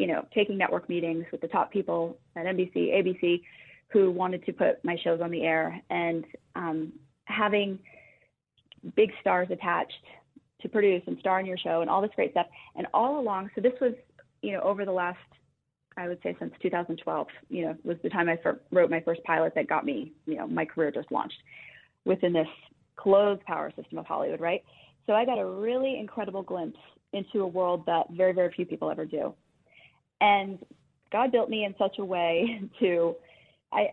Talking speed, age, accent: 195 wpm, 20-39, American